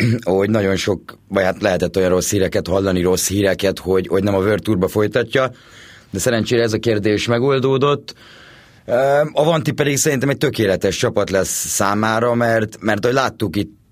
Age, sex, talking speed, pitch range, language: 30-49, male, 160 wpm, 95-115 Hz, Hungarian